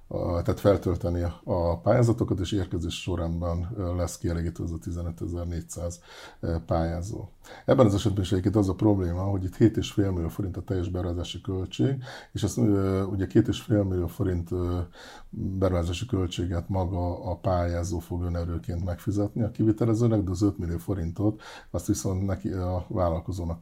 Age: 50-69